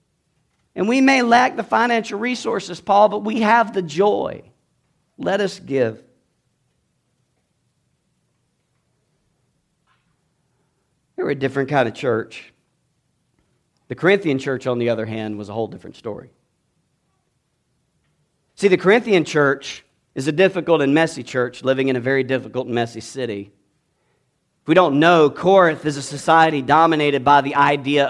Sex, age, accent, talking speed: male, 50-69, American, 140 wpm